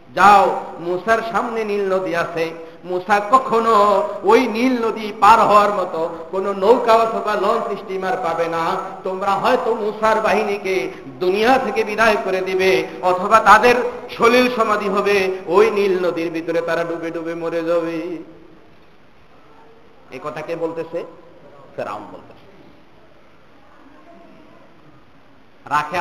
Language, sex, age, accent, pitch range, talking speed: Bengali, male, 50-69, native, 180-245 Hz, 85 wpm